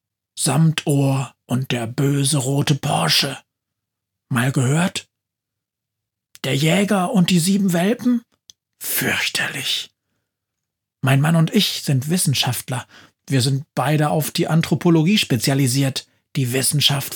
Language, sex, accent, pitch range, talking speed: German, male, German, 110-150 Hz, 105 wpm